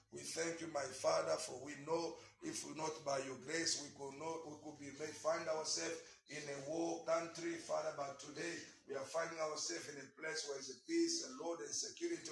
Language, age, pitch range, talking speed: English, 50-69, 155-170 Hz, 215 wpm